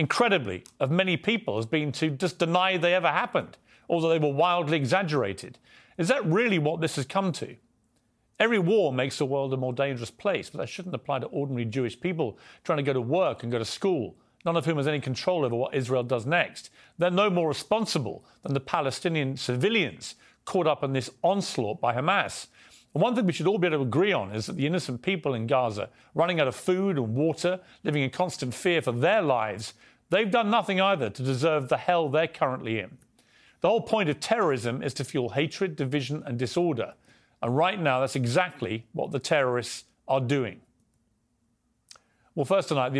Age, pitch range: 40-59, 125-170 Hz